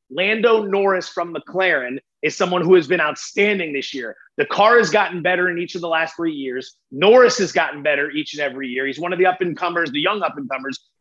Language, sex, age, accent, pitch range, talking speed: English, male, 30-49, American, 165-205 Hz, 225 wpm